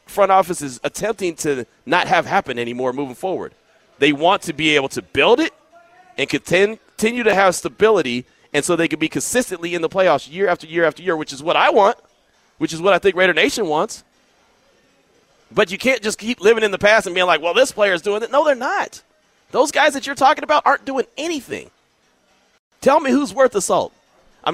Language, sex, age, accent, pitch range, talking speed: English, male, 30-49, American, 170-250 Hz, 215 wpm